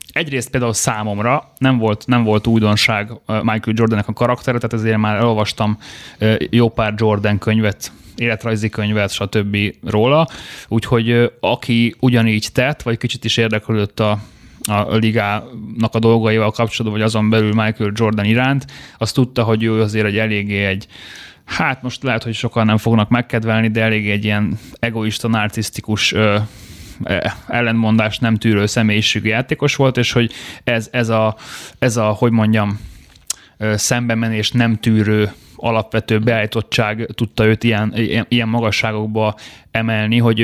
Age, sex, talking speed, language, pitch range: 20-39, male, 140 wpm, Hungarian, 105-120 Hz